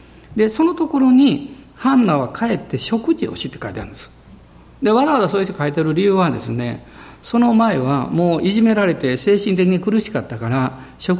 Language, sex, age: Japanese, male, 50-69